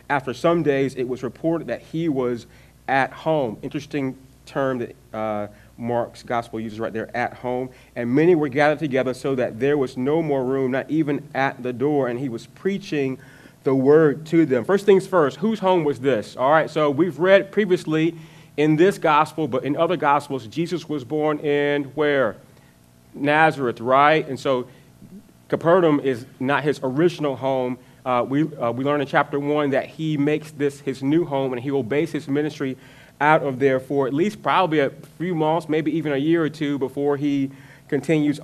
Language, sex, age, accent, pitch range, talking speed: English, male, 30-49, American, 130-155 Hz, 190 wpm